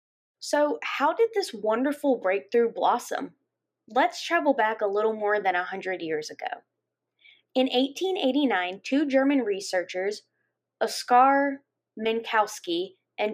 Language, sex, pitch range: English, female, 205-265 Hz